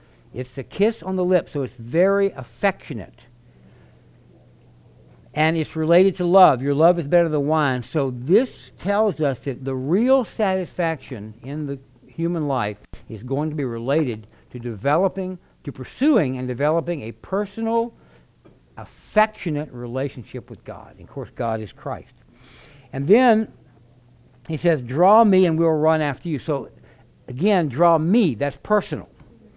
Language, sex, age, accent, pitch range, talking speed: English, male, 60-79, American, 125-180 Hz, 150 wpm